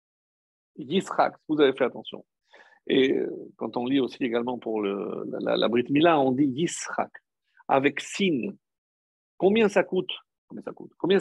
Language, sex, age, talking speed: French, male, 50-69, 160 wpm